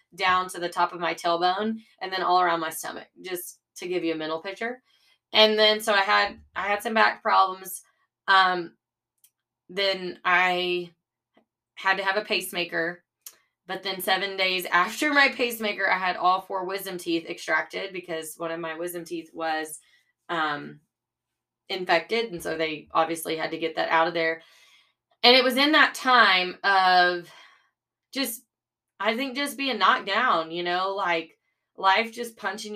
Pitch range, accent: 165-205 Hz, American